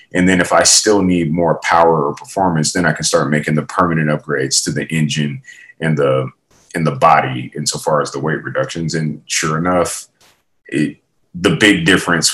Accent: American